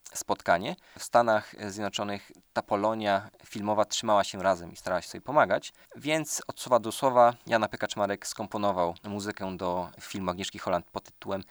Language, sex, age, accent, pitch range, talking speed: Polish, male, 20-39, native, 95-105 Hz, 155 wpm